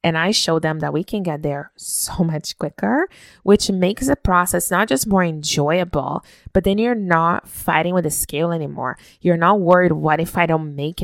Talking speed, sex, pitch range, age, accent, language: 200 wpm, female, 155-185 Hz, 20-39, American, English